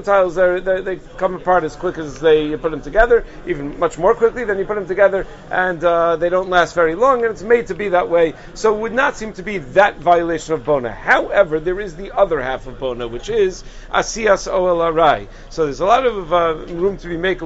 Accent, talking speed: American, 235 wpm